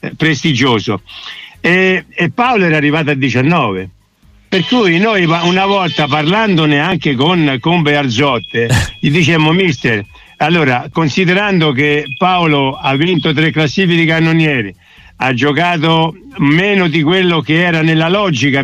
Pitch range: 140-180 Hz